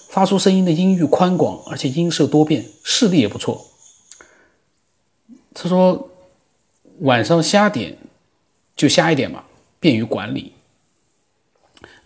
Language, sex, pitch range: Chinese, male, 110-165 Hz